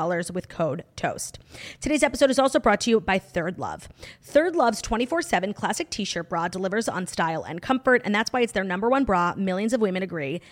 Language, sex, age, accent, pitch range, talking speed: English, female, 30-49, American, 185-245 Hz, 205 wpm